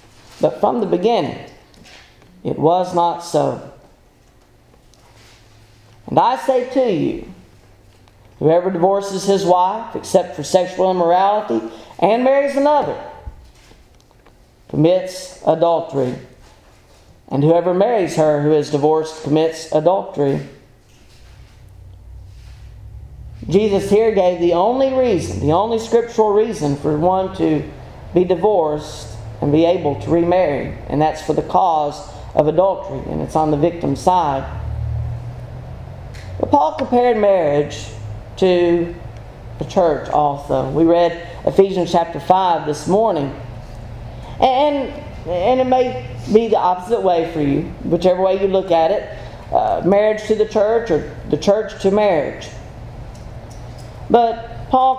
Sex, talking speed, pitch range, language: male, 120 wpm, 120-190 Hz, English